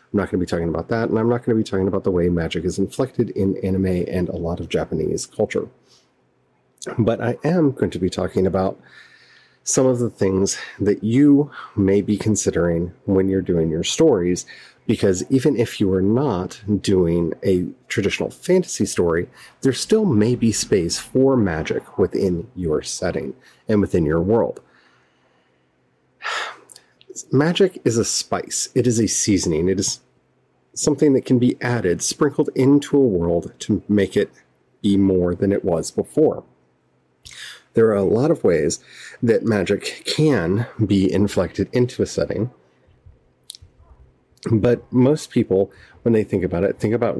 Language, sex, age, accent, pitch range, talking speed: English, male, 30-49, American, 90-120 Hz, 165 wpm